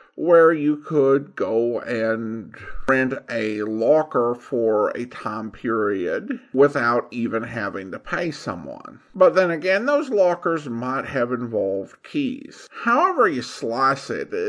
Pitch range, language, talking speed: 125-195 Hz, English, 130 wpm